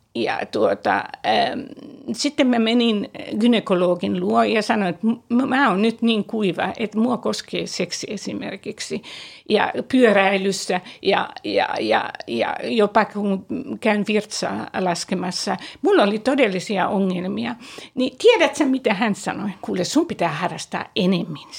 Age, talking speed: 60-79, 130 wpm